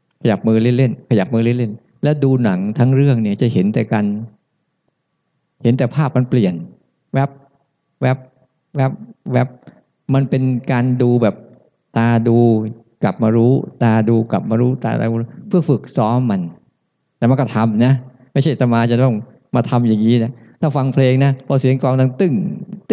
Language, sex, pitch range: Thai, male, 115-140 Hz